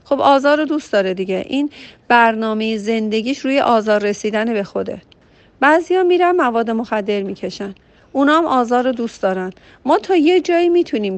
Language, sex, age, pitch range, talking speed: Persian, female, 40-59, 200-275 Hz, 155 wpm